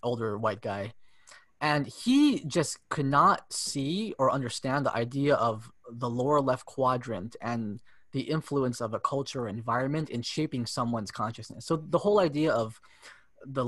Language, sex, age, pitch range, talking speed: English, male, 20-39, 115-145 Hz, 160 wpm